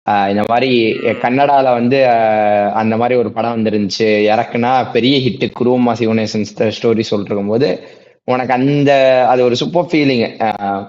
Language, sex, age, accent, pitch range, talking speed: Tamil, male, 20-39, native, 115-140 Hz, 125 wpm